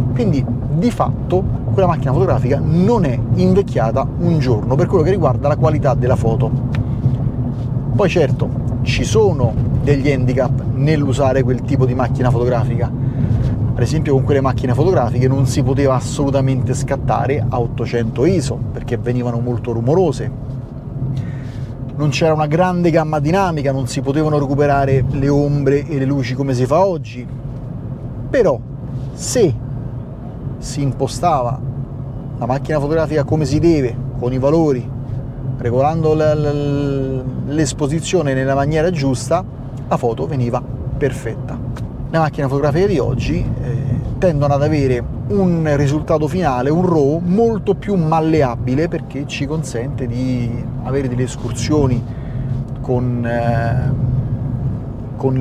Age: 30-49